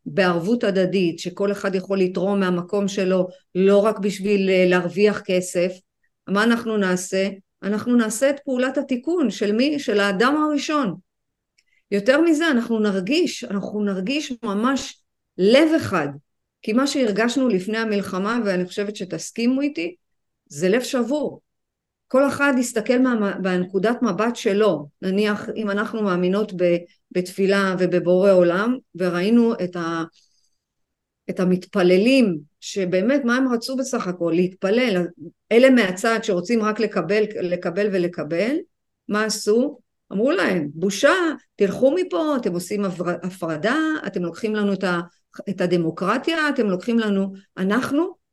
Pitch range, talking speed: 185-250 Hz, 125 wpm